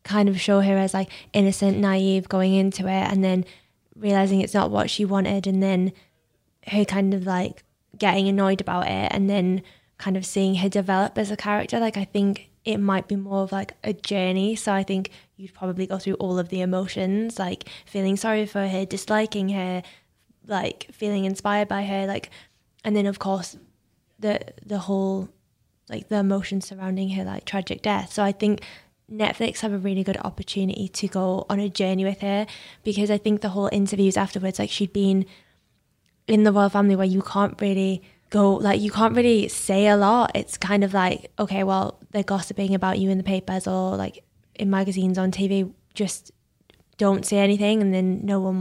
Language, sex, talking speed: English, female, 195 wpm